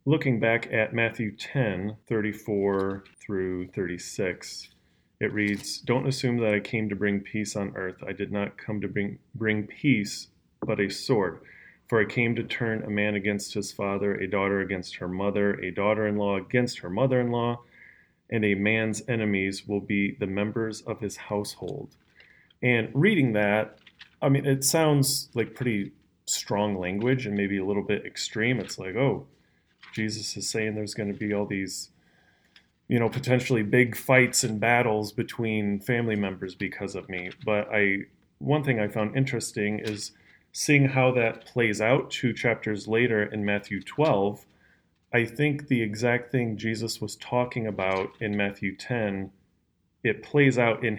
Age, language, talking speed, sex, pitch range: 30-49, English, 165 wpm, male, 100-120 Hz